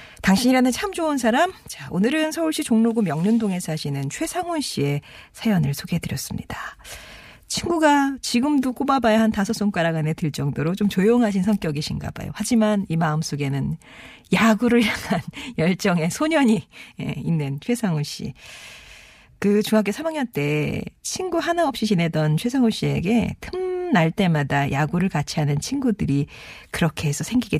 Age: 40-59